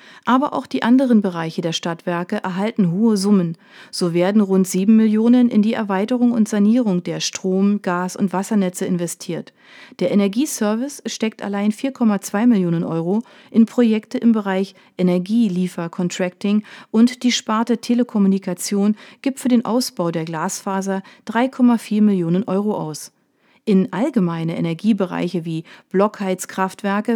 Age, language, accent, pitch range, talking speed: 40-59, German, German, 180-230 Hz, 130 wpm